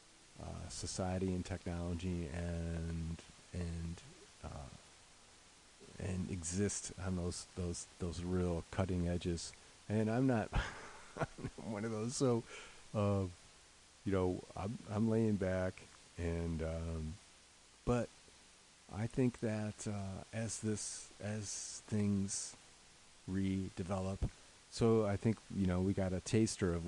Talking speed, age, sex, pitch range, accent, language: 115 wpm, 40-59, male, 90-110 Hz, American, English